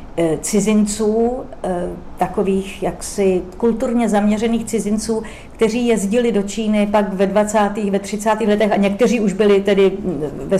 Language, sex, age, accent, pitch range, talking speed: Czech, female, 40-59, native, 190-215 Hz, 125 wpm